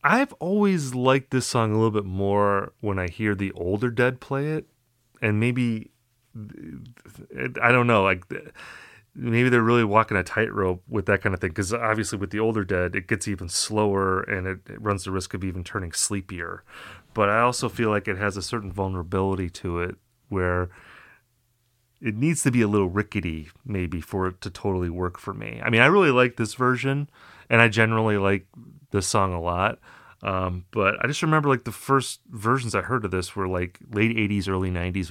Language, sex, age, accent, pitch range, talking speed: English, male, 30-49, American, 95-120 Hz, 200 wpm